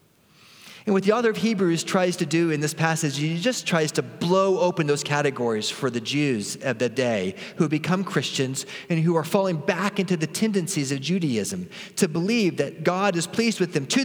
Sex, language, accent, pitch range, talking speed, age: male, English, American, 165-215 Hz, 210 wpm, 40-59